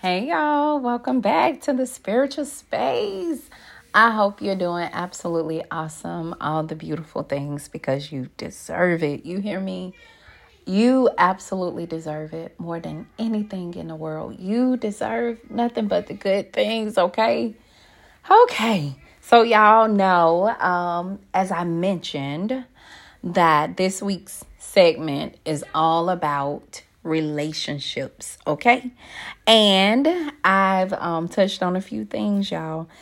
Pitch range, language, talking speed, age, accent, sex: 150-205 Hz, English, 125 wpm, 30-49, American, female